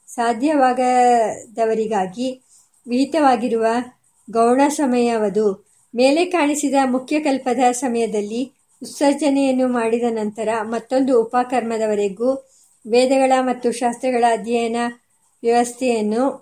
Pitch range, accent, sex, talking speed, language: 230-275 Hz, native, male, 65 wpm, Kannada